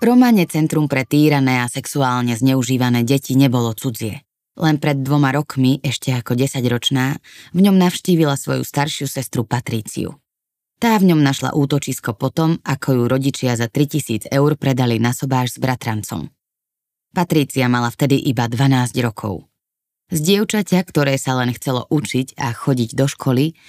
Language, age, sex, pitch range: Slovak, 20-39, female, 125-150 Hz